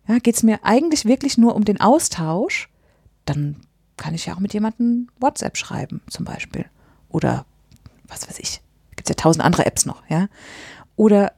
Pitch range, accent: 190-245 Hz, German